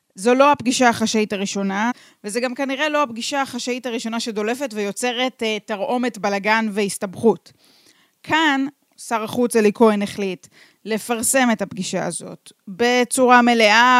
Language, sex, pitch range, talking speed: Hebrew, female, 210-275 Hz, 125 wpm